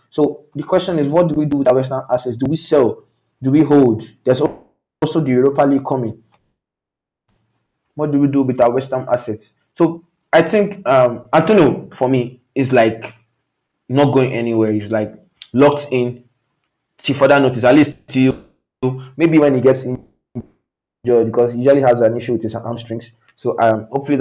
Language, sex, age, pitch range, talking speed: English, male, 20-39, 120-145 Hz, 175 wpm